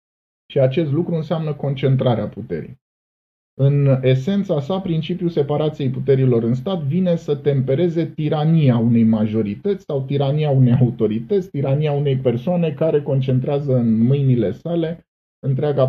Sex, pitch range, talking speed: male, 120-155 Hz, 125 wpm